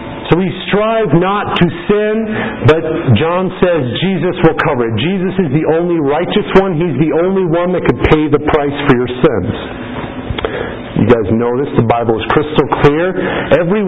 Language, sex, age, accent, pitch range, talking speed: English, male, 50-69, American, 140-175 Hz, 175 wpm